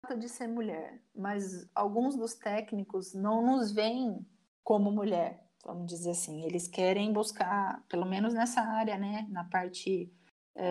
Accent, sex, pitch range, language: Brazilian, female, 195-235 Hz, Portuguese